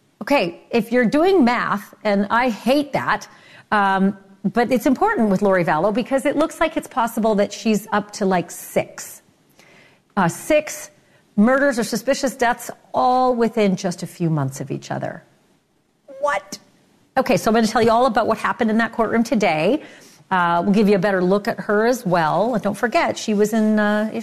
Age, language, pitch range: 40-59, English, 185-245 Hz